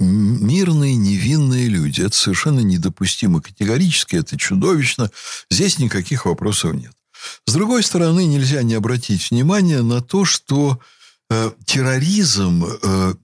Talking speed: 110 wpm